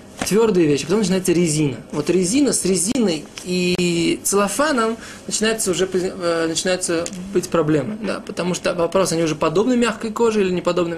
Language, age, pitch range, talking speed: Russian, 20-39, 170-210 Hz, 150 wpm